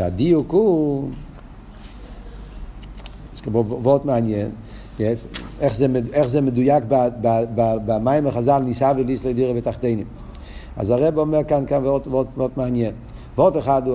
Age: 50-69